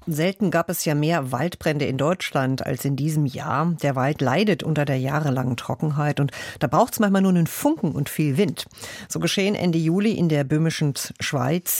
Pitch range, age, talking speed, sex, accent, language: 140-170 Hz, 50-69, 195 wpm, female, German, German